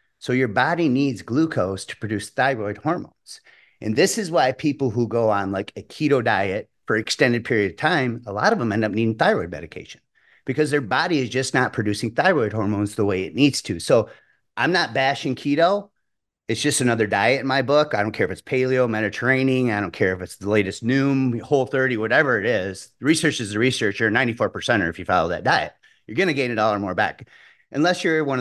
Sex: male